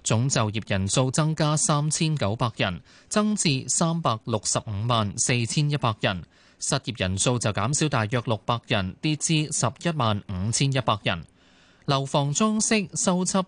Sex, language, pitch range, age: male, Chinese, 110-150 Hz, 20-39